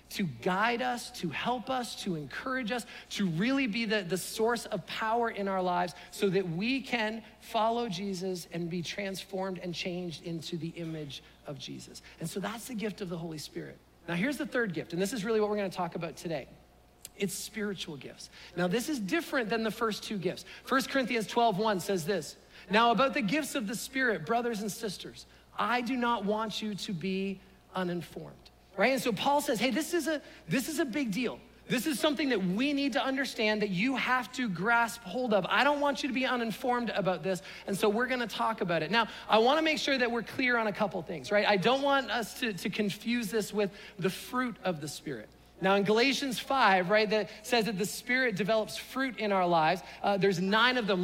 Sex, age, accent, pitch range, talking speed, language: male, 40-59, American, 190-240 Hz, 220 wpm, English